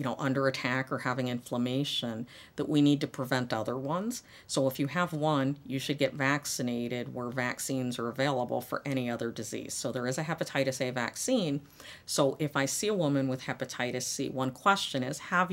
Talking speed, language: 195 wpm, English